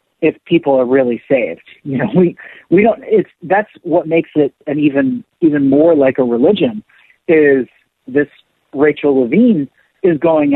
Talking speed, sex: 160 wpm, male